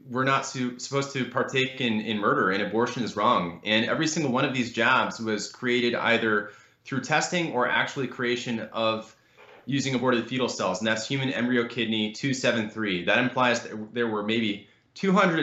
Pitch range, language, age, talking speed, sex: 110-130 Hz, English, 20-39, 175 wpm, male